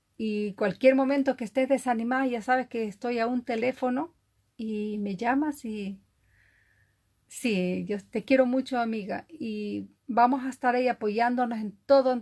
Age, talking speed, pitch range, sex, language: 40-59, 155 wpm, 210-260 Hz, female, Spanish